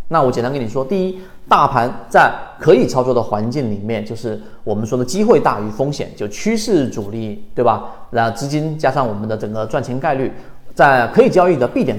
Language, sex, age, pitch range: Chinese, male, 30-49, 115-155 Hz